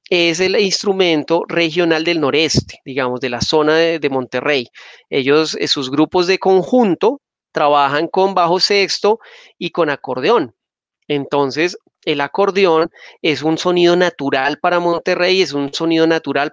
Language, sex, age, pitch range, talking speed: Spanish, male, 40-59, 150-185 Hz, 140 wpm